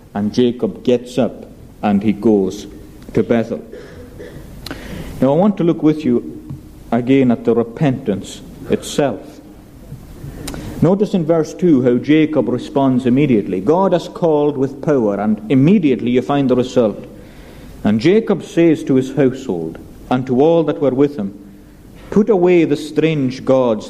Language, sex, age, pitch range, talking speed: English, male, 50-69, 120-165 Hz, 145 wpm